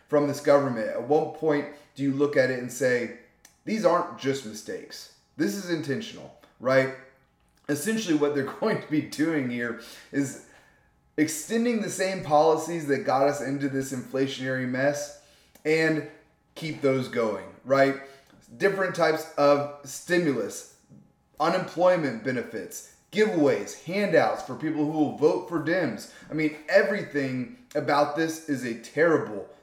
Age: 30-49